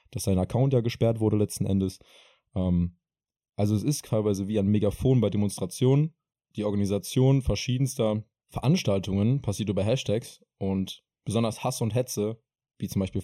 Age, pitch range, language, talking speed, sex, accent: 20-39, 100-125 Hz, German, 145 wpm, male, German